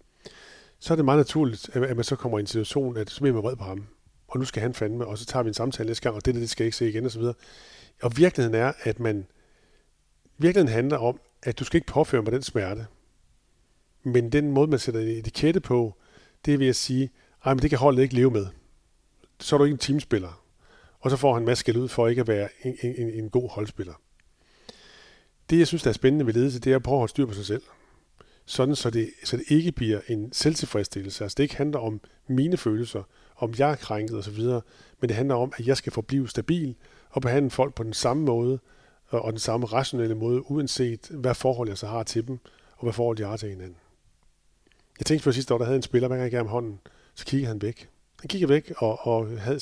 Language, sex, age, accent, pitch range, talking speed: Danish, male, 40-59, native, 110-135 Hz, 235 wpm